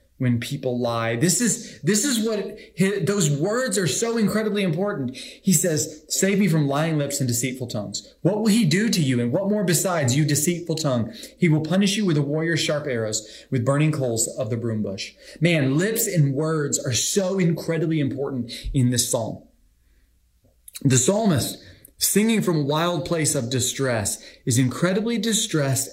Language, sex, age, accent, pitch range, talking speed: English, male, 30-49, American, 120-175 Hz, 175 wpm